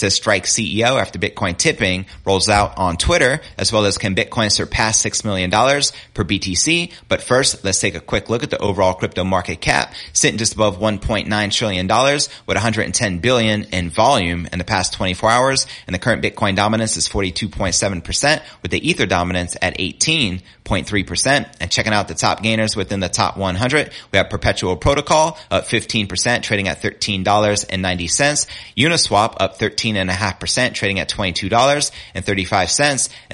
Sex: male